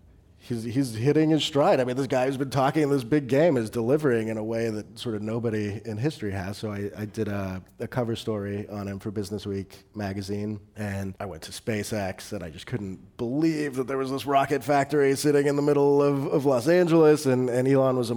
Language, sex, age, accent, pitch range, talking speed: English, male, 30-49, American, 105-135 Hz, 235 wpm